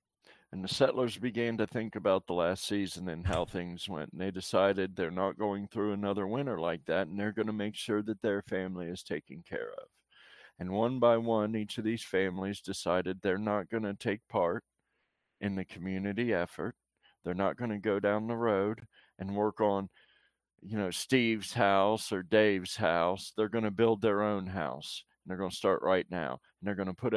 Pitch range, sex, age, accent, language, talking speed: 95-110 Hz, male, 40-59, American, English, 210 wpm